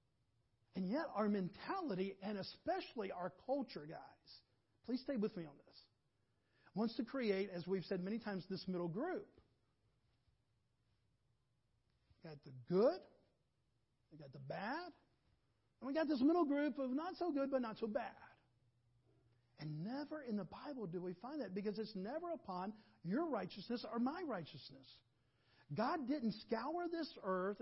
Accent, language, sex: American, English, male